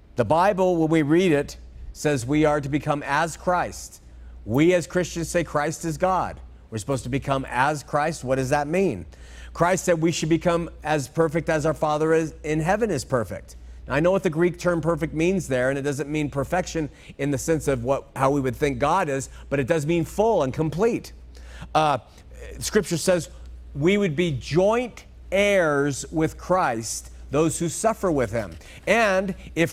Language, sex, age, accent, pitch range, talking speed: English, male, 50-69, American, 130-190 Hz, 190 wpm